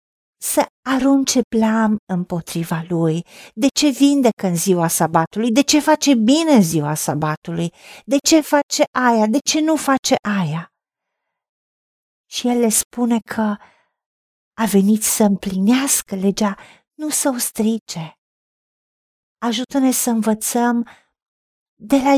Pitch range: 195-270 Hz